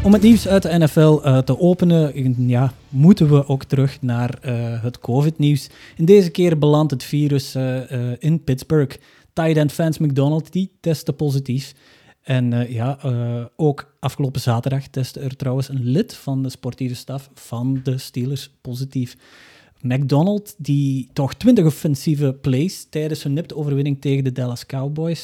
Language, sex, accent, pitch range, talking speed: Dutch, male, Dutch, 130-160 Hz, 165 wpm